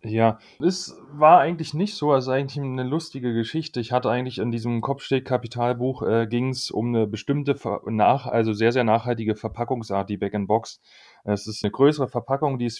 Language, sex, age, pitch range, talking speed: German, male, 30-49, 110-135 Hz, 185 wpm